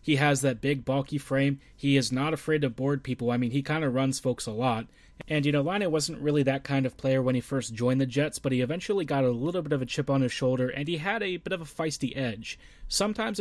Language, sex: English, male